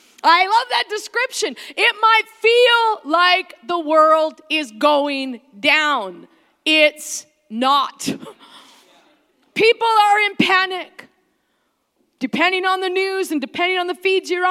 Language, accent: English, American